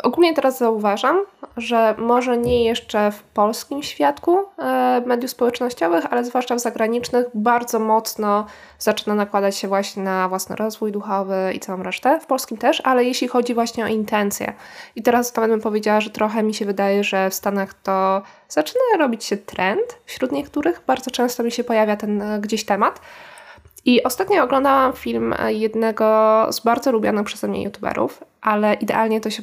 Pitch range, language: 205-255 Hz, Polish